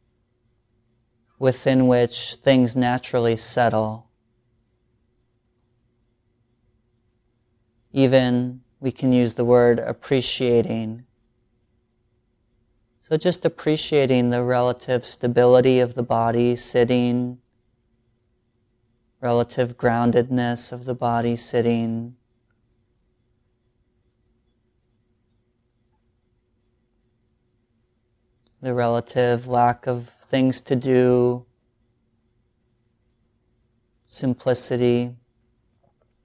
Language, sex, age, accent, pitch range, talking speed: English, male, 30-49, American, 115-120 Hz, 60 wpm